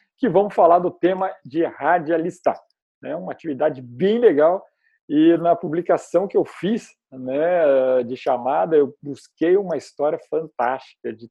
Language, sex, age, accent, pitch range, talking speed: Portuguese, male, 50-69, Brazilian, 140-210 Hz, 150 wpm